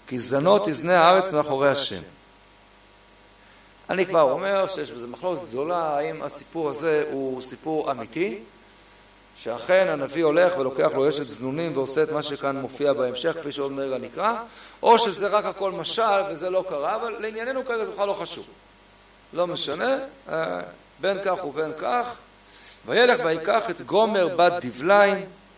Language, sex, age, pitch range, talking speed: Hebrew, male, 50-69, 135-195 Hz, 145 wpm